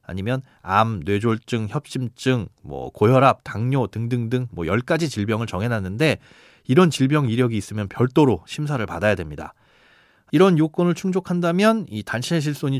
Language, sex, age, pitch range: Korean, male, 30-49, 105-150 Hz